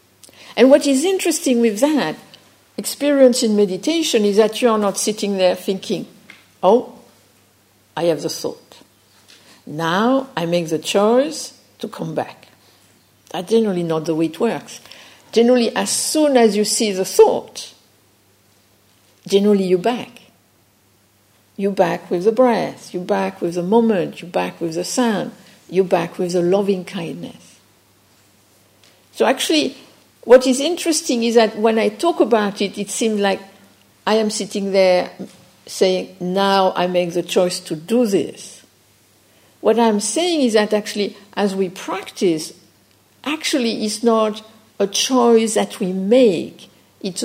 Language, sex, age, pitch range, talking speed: English, female, 60-79, 175-235 Hz, 145 wpm